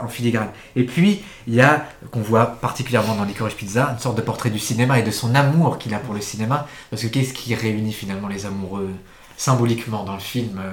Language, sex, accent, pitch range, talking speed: French, male, French, 110-135 Hz, 225 wpm